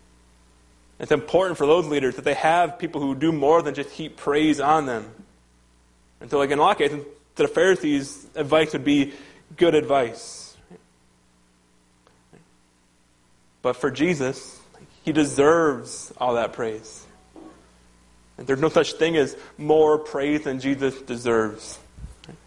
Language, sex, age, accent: English, male, 30-49, American